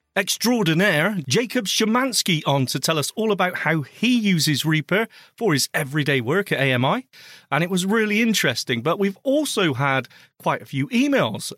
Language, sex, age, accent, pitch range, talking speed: English, male, 30-49, British, 135-200 Hz, 165 wpm